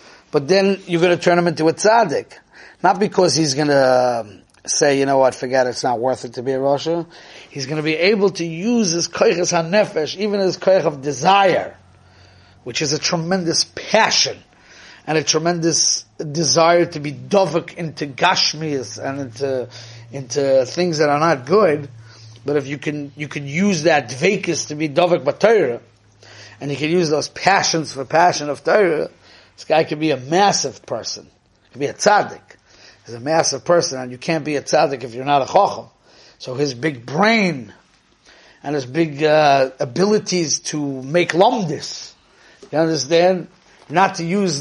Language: English